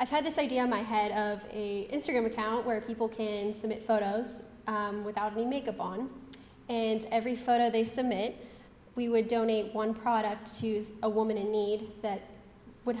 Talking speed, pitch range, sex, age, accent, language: 175 wpm, 220-250 Hz, female, 10-29, American, English